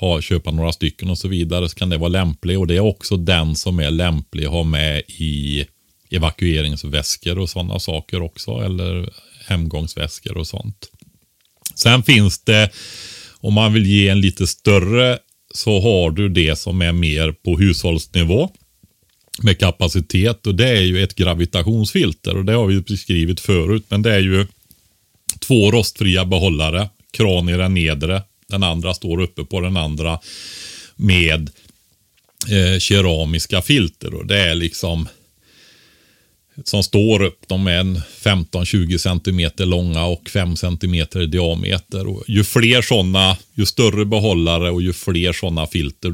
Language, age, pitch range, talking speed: Swedish, 30-49, 85-100 Hz, 150 wpm